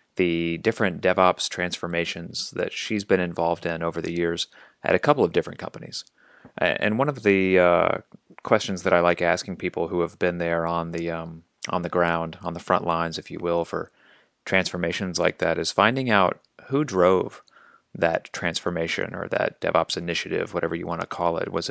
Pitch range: 85-100 Hz